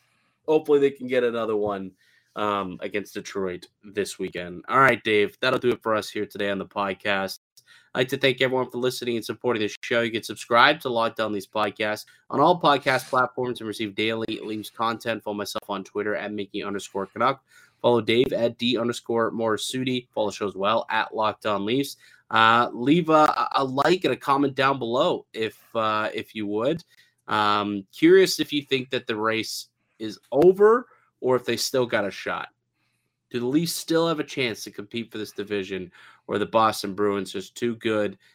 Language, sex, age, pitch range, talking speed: English, male, 20-39, 105-125 Hz, 195 wpm